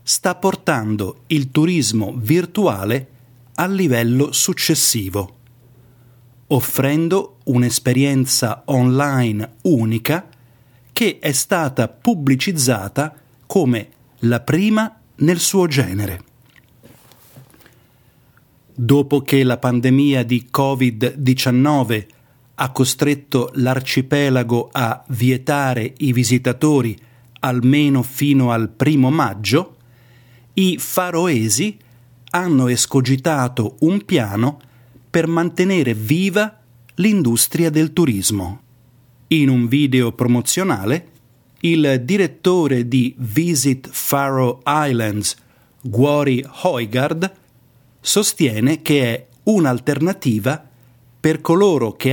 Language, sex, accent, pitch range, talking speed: Italian, male, native, 120-150 Hz, 80 wpm